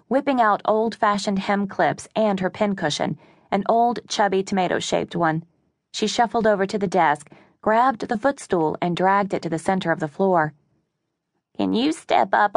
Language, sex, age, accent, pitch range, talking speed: English, female, 20-39, American, 170-215 Hz, 165 wpm